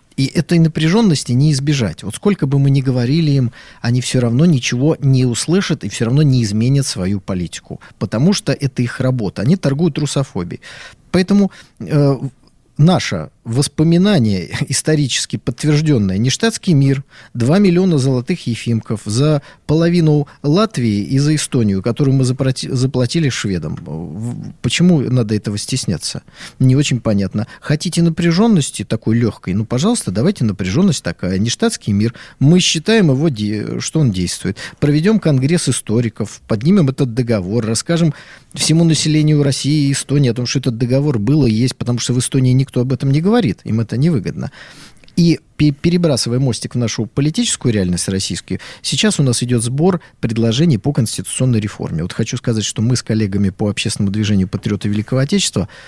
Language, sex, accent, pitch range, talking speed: Russian, male, native, 115-155 Hz, 150 wpm